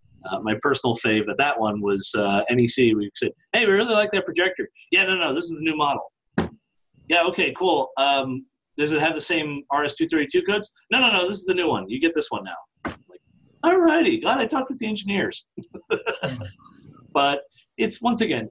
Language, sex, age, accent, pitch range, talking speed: English, male, 30-49, American, 115-180 Hz, 210 wpm